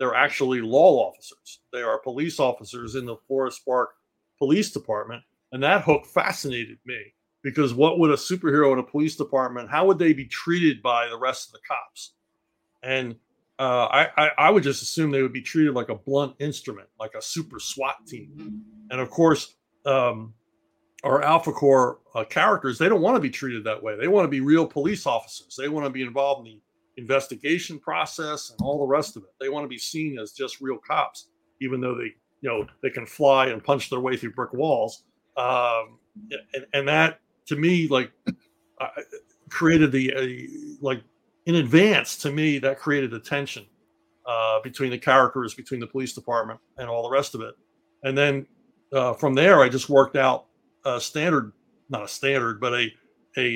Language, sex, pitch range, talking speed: English, male, 125-150 Hz, 195 wpm